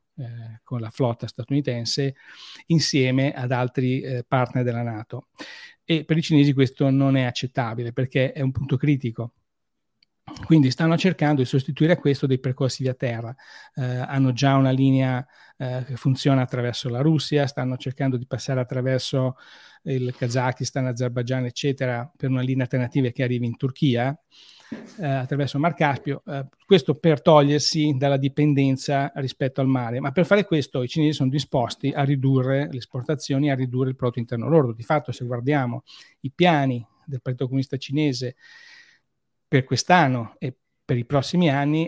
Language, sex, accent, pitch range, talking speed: Italian, male, native, 125-145 Hz, 160 wpm